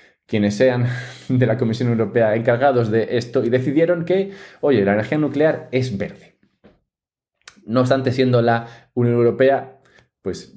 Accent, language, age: Spanish, English, 20-39